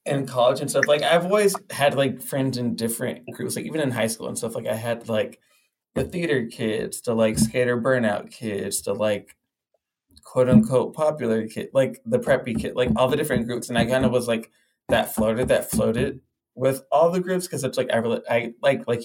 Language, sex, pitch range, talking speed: English, male, 110-130 Hz, 215 wpm